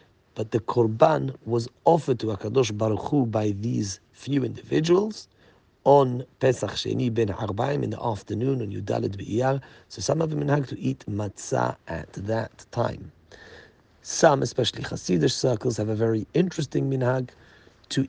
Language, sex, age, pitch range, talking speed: English, male, 40-59, 110-130 Hz, 145 wpm